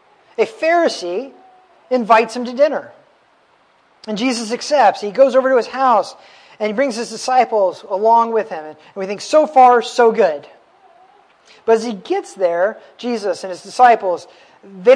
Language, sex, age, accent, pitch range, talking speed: English, male, 40-59, American, 190-245 Hz, 160 wpm